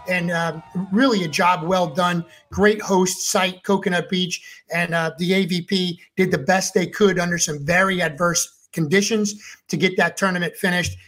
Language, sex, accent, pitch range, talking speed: English, male, American, 185-230 Hz, 170 wpm